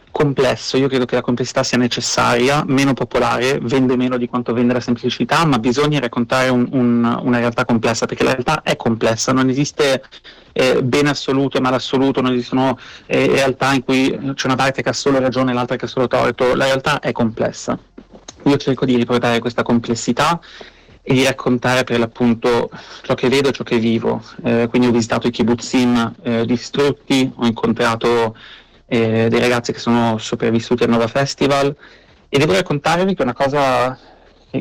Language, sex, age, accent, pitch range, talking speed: Italian, male, 30-49, native, 120-135 Hz, 180 wpm